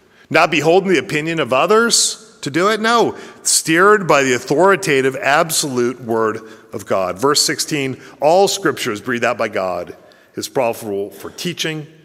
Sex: male